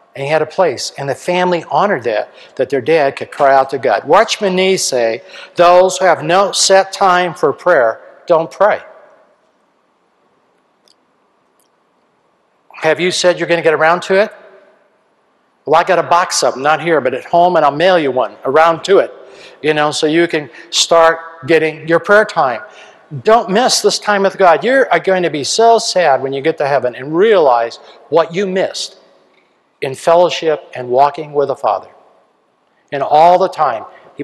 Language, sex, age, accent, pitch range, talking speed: English, male, 60-79, American, 155-195 Hz, 185 wpm